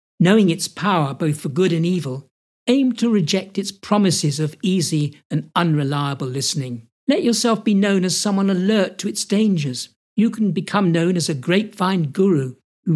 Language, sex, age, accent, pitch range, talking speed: English, male, 60-79, British, 150-200 Hz, 170 wpm